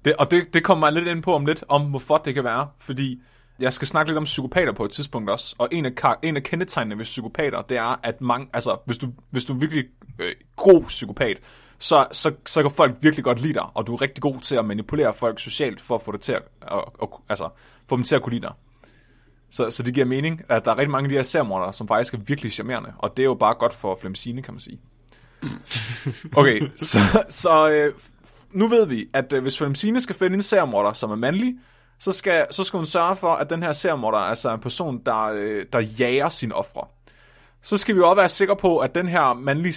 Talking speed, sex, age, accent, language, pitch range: 245 wpm, male, 20-39, native, Danish, 120-165 Hz